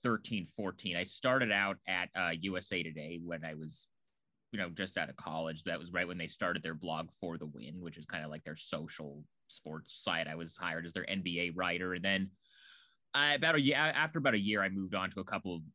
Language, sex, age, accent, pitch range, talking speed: English, male, 30-49, American, 85-105 Hz, 235 wpm